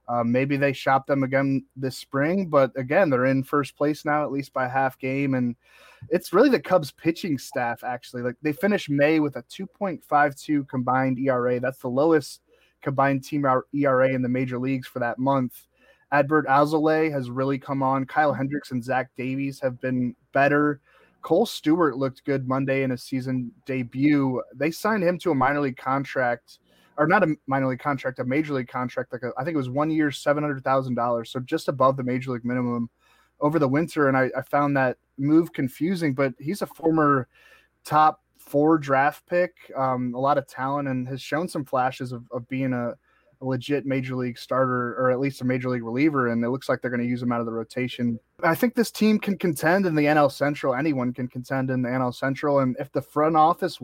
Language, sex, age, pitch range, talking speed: English, male, 20-39, 130-150 Hz, 205 wpm